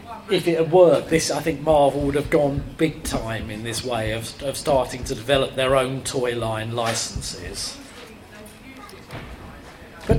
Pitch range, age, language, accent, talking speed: 135-160 Hz, 40-59, English, British, 160 wpm